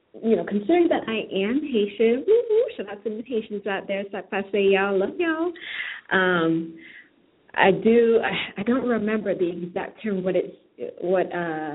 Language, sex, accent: English, female, American